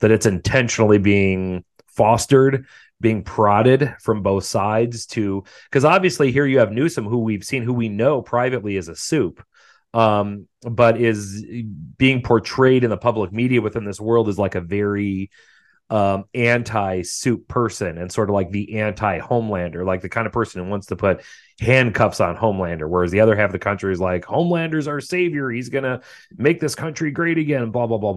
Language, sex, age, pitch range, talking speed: English, male, 30-49, 95-115 Hz, 185 wpm